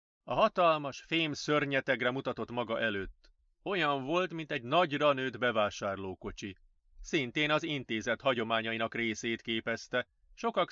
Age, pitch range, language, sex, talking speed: 30-49, 105-160 Hz, Hungarian, male, 110 wpm